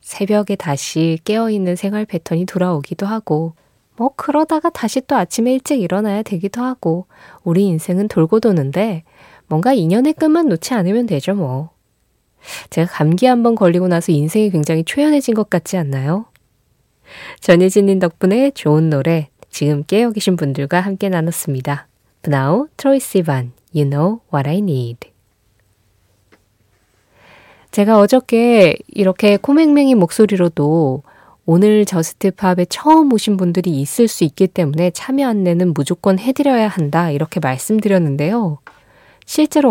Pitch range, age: 155-220 Hz, 20-39